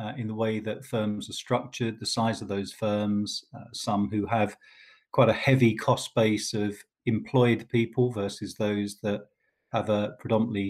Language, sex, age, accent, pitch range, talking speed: English, male, 40-59, British, 105-130 Hz, 175 wpm